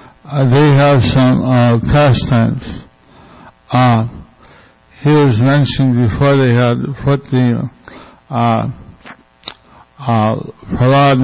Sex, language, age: male, English, 60-79